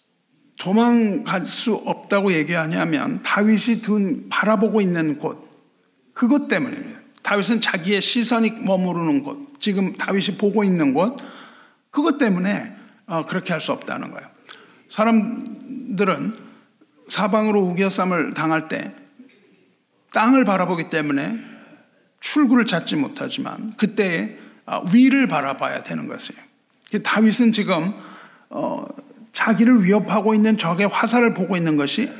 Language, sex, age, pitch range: Korean, male, 50-69, 195-255 Hz